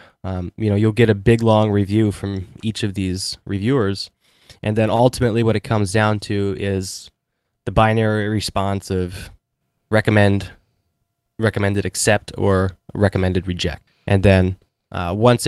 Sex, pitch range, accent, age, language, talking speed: male, 100-115 Hz, American, 20-39, English, 145 wpm